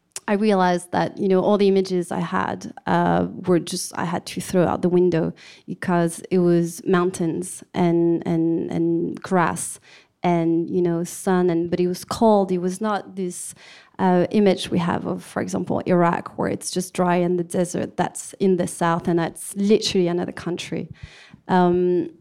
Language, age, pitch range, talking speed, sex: English, 30-49, 175-190 Hz, 180 wpm, female